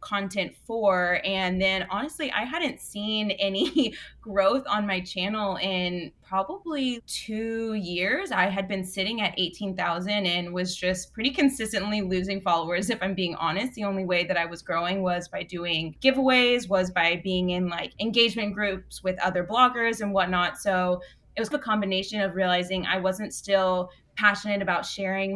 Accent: American